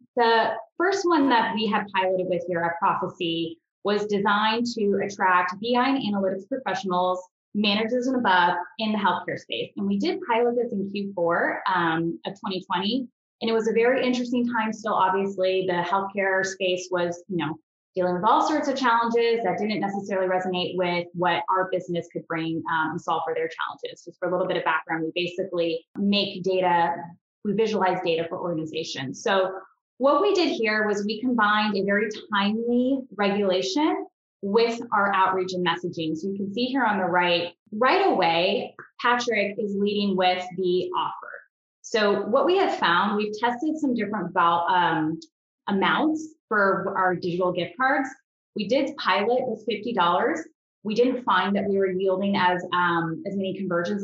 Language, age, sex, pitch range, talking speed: English, 20-39, female, 180-230 Hz, 170 wpm